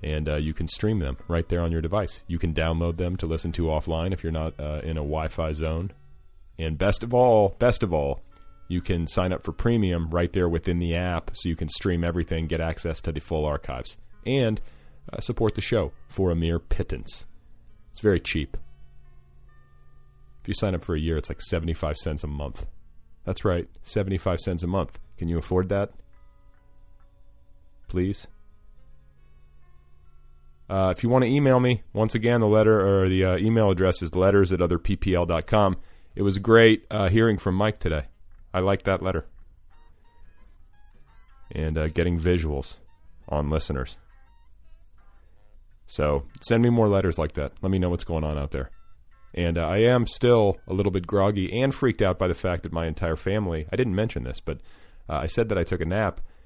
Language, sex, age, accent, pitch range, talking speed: English, male, 40-59, American, 80-100 Hz, 190 wpm